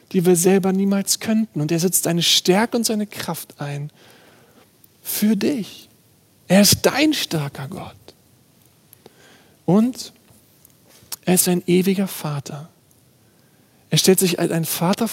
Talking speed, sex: 130 wpm, male